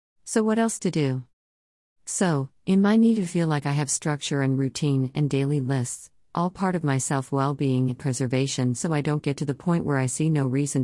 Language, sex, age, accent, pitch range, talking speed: English, female, 50-69, American, 130-170 Hz, 215 wpm